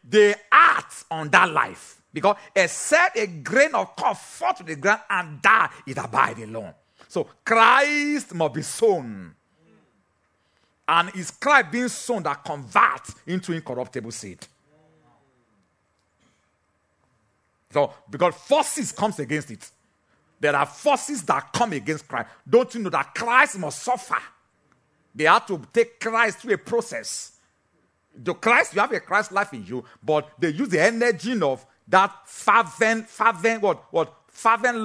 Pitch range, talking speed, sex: 140-230 Hz, 145 wpm, male